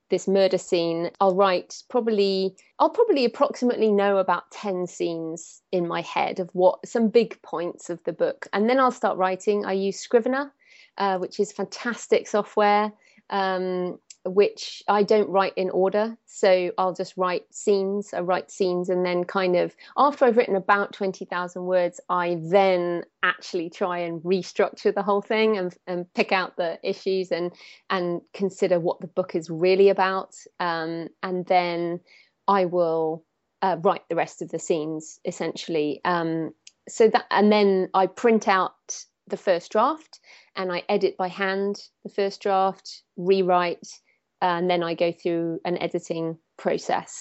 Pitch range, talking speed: 175-205 Hz, 160 wpm